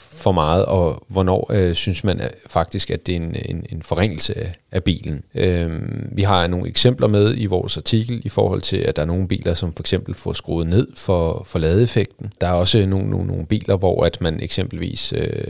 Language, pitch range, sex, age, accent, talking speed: Danish, 85-110 Hz, male, 30-49, native, 200 wpm